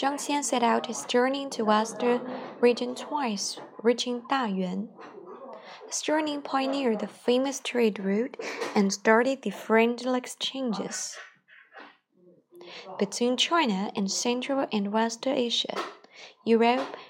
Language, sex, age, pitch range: Chinese, female, 20-39, 230-295 Hz